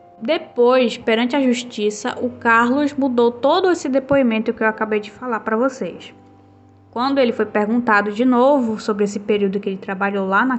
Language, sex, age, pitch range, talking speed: Portuguese, female, 10-29, 210-275 Hz, 175 wpm